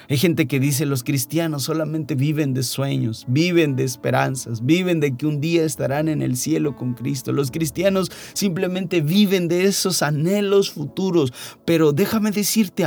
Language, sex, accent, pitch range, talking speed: Spanish, male, Mexican, 150-190 Hz, 165 wpm